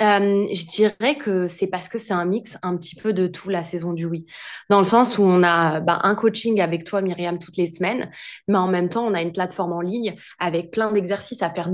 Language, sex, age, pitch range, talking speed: French, female, 20-39, 180-220 Hz, 250 wpm